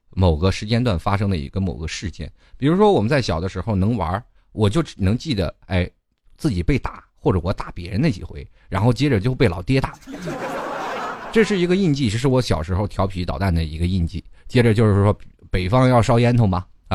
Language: Chinese